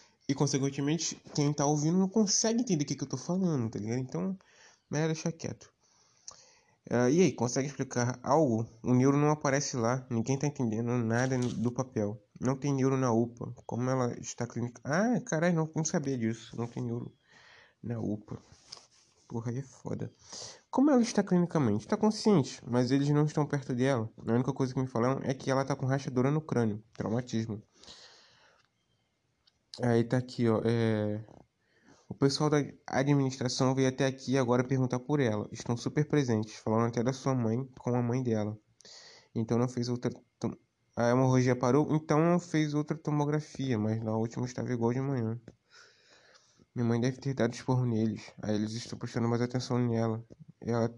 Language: Portuguese